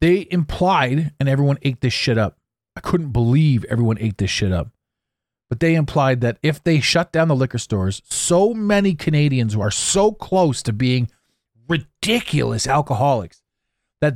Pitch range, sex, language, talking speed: 110-150 Hz, male, English, 165 wpm